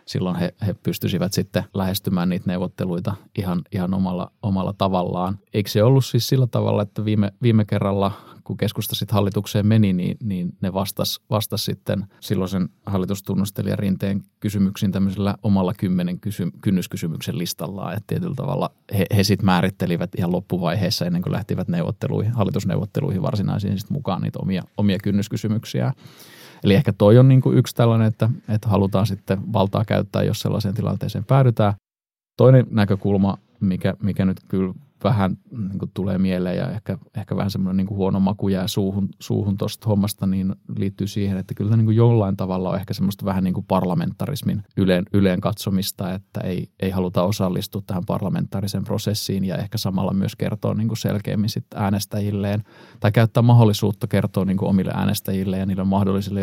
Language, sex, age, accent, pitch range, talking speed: Finnish, male, 30-49, native, 95-110 Hz, 160 wpm